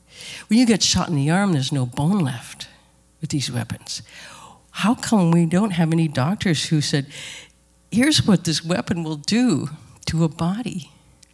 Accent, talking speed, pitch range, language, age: American, 170 wpm, 145-175 Hz, English, 60-79